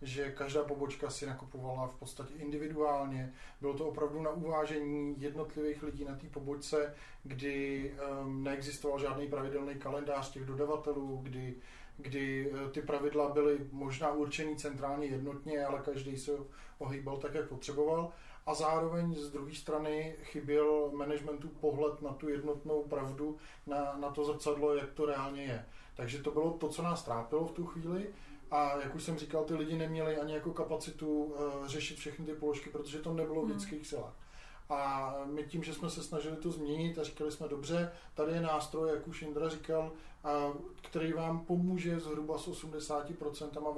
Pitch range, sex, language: 140-155 Hz, male, Czech